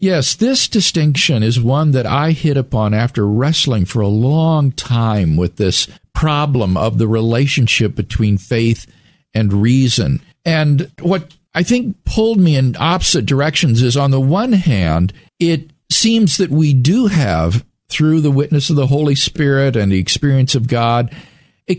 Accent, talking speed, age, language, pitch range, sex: American, 160 wpm, 50-69, English, 115-170 Hz, male